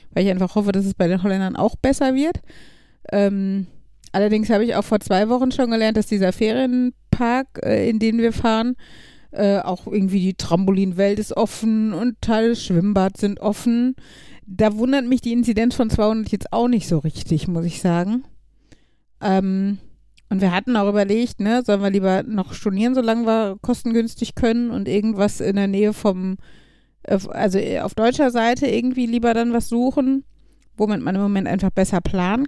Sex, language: female, German